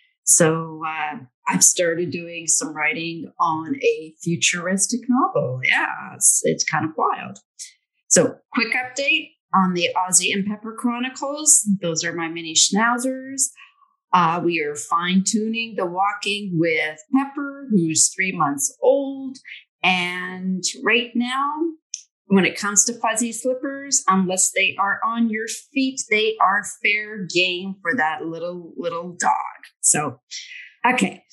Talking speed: 130 wpm